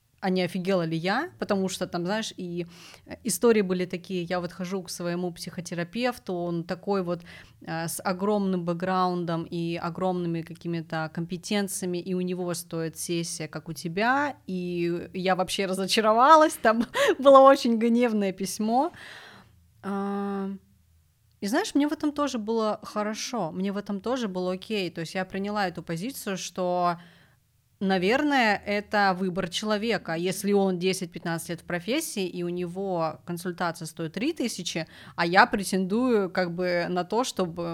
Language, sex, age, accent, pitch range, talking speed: Russian, female, 30-49, native, 175-205 Hz, 145 wpm